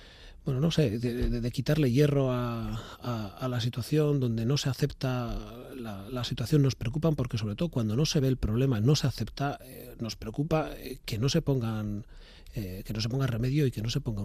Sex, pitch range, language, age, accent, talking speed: male, 110-130 Hz, Spanish, 40-59, Spanish, 225 wpm